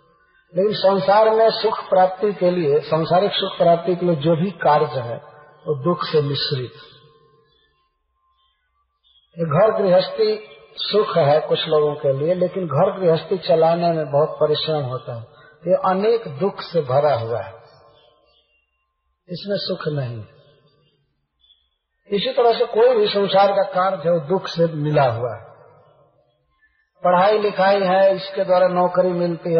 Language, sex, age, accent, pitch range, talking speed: Hindi, male, 50-69, native, 150-195 Hz, 145 wpm